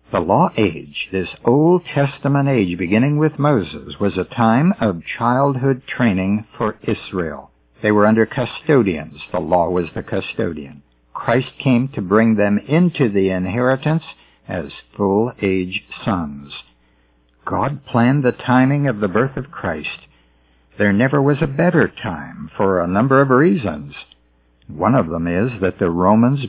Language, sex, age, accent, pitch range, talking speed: English, male, 60-79, American, 85-125 Hz, 145 wpm